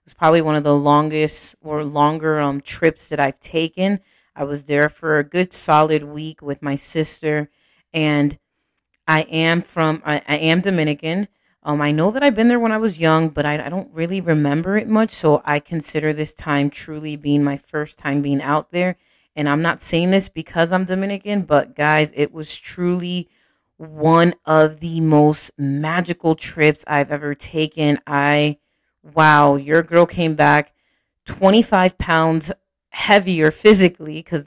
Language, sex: English, female